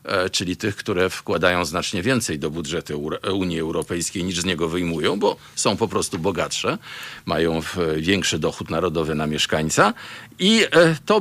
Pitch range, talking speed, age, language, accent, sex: 80-125 Hz, 145 wpm, 50-69, Polish, native, male